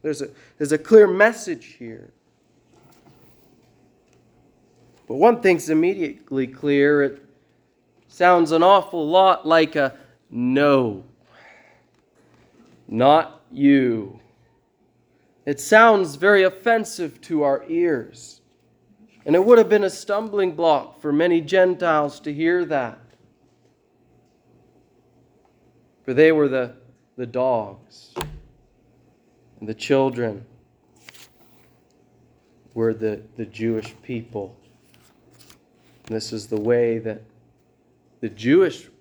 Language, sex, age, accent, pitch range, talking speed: English, male, 20-39, American, 120-180 Hz, 95 wpm